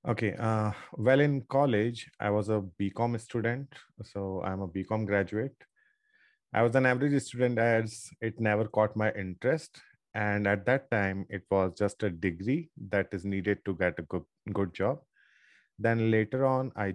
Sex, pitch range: male, 100-120 Hz